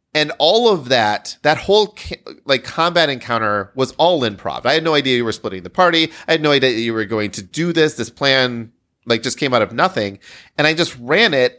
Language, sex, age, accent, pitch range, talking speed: English, male, 30-49, American, 105-135 Hz, 235 wpm